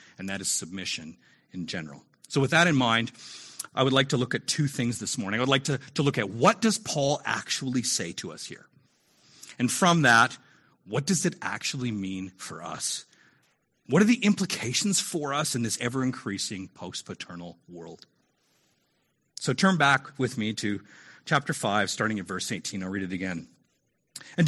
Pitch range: 110-175 Hz